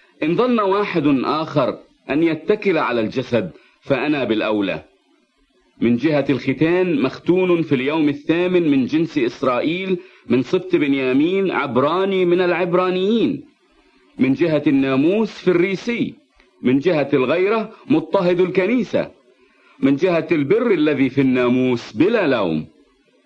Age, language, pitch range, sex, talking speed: 50-69, English, 135-200 Hz, male, 115 wpm